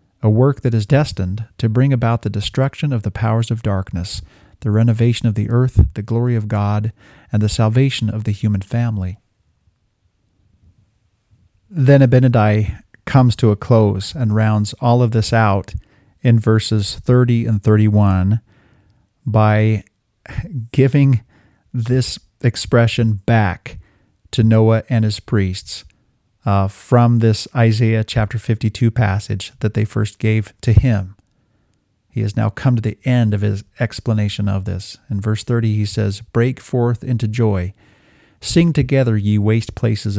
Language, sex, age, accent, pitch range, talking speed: English, male, 40-59, American, 100-120 Hz, 145 wpm